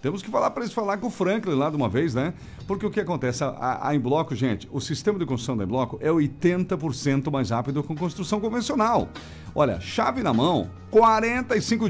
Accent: Brazilian